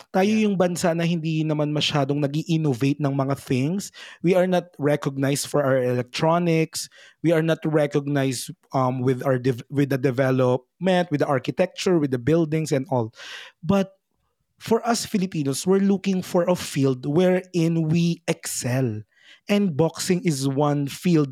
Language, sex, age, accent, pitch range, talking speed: Filipino, male, 20-39, native, 140-175 Hz, 155 wpm